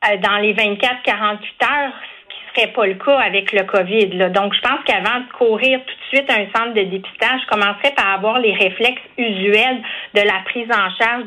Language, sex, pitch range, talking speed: French, female, 200-240 Hz, 200 wpm